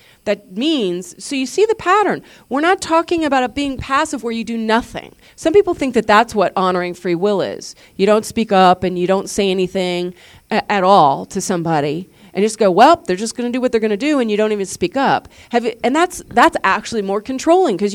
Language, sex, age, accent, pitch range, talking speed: English, female, 40-59, American, 190-255 Hz, 235 wpm